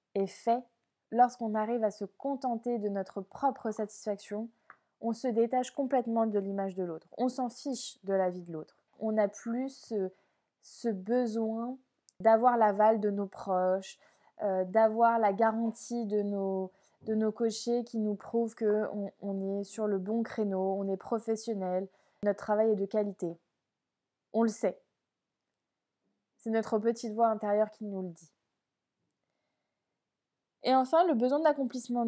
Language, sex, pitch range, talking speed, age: French, female, 205-245 Hz, 155 wpm, 20-39